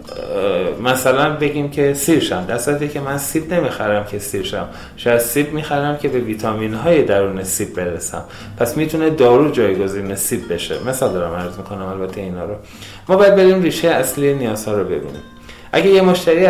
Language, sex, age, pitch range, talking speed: Persian, male, 30-49, 110-150 Hz, 165 wpm